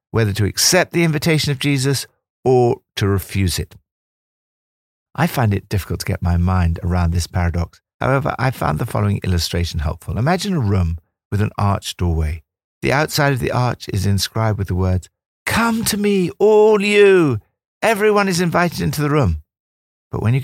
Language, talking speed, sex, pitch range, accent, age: English, 175 wpm, male, 90-130 Hz, British, 60-79